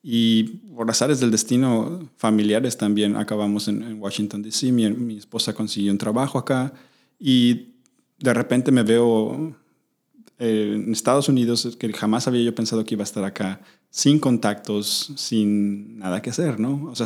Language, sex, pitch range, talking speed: Spanish, male, 105-130 Hz, 160 wpm